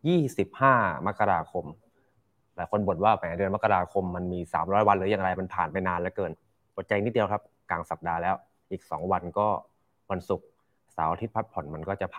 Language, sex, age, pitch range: Thai, male, 20-39, 90-115 Hz